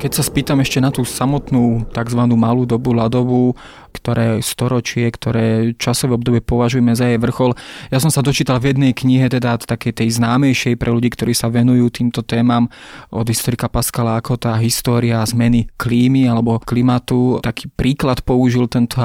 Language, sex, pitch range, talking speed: Slovak, male, 120-125 Hz, 165 wpm